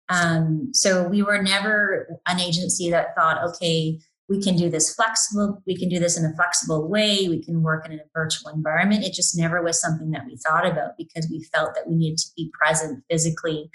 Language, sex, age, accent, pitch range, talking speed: English, female, 30-49, American, 160-195 Hz, 220 wpm